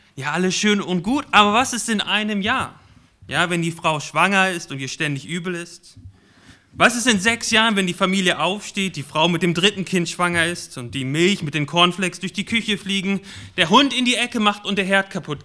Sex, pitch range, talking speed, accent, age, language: male, 140-190 Hz, 230 wpm, German, 30-49, German